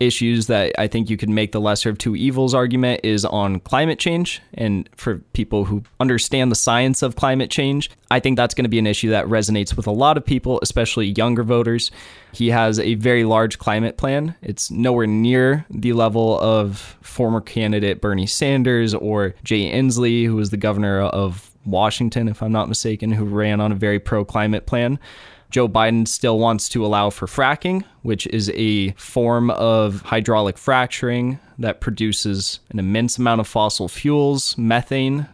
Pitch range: 110-125 Hz